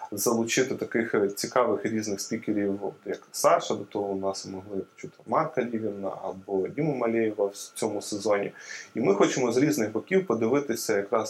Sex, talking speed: male, 155 wpm